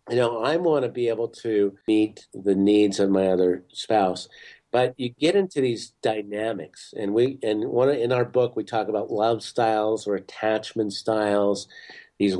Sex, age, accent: male, 50-69, American